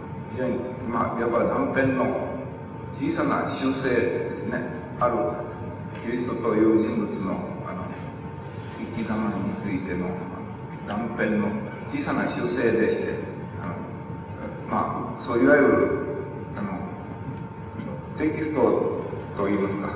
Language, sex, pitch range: Japanese, male, 105-125 Hz